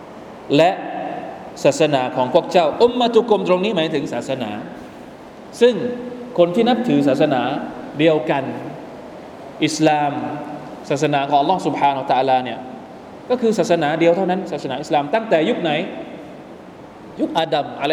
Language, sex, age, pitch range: Thai, male, 20-39, 140-175 Hz